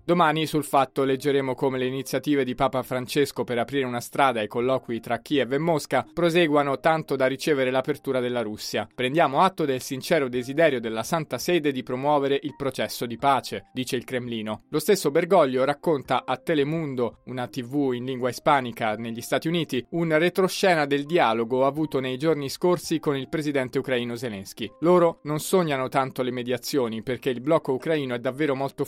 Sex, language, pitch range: male, Italian, 130-155 Hz